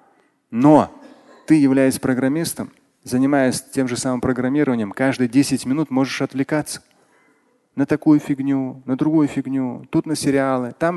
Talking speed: 130 wpm